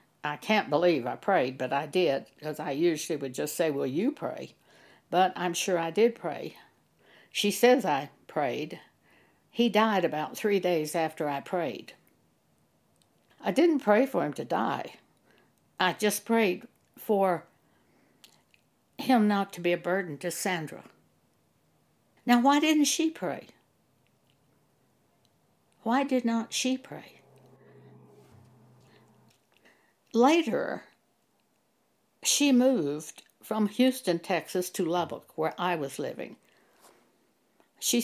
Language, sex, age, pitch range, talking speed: English, female, 60-79, 160-230 Hz, 120 wpm